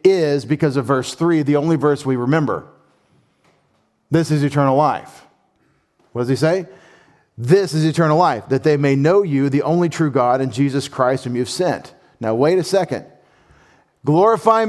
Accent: American